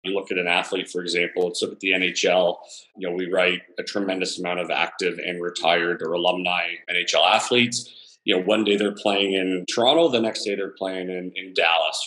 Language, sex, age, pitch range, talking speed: English, male, 30-49, 90-110 Hz, 220 wpm